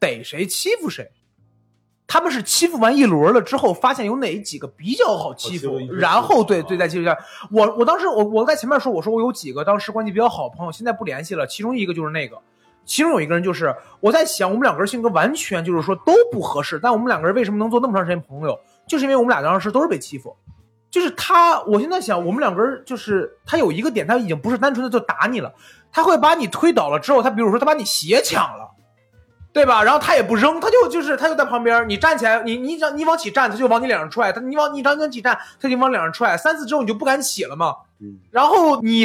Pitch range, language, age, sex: 195-290 Hz, Chinese, 30-49, male